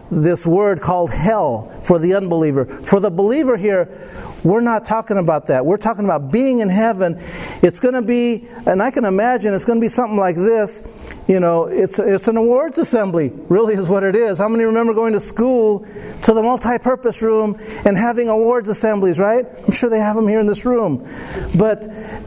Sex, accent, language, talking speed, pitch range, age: male, American, English, 195 wpm, 175-220 Hz, 50-69